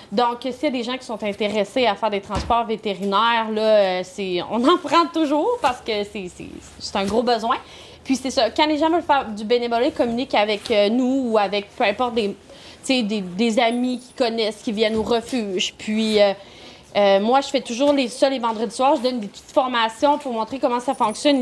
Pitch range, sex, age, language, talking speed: 230-300 Hz, female, 30-49, French, 215 wpm